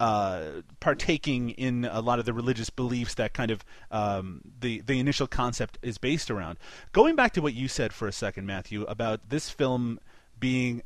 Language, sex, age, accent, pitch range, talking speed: English, male, 30-49, American, 115-145 Hz, 190 wpm